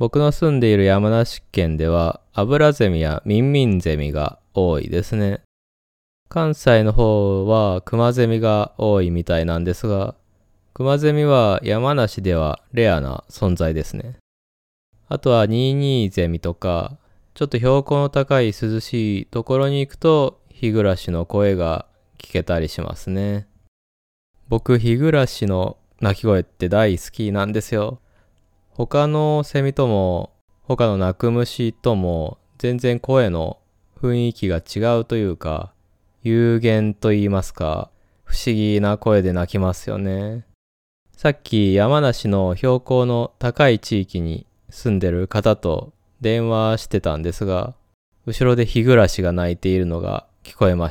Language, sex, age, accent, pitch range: Japanese, male, 20-39, native, 90-120 Hz